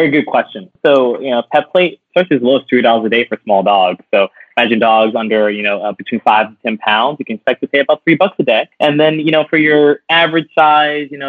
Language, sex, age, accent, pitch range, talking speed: English, male, 20-39, American, 110-135 Hz, 265 wpm